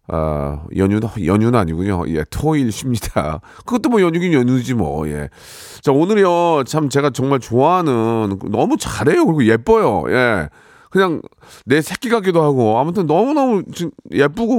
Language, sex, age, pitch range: Korean, male, 40-59, 120-185 Hz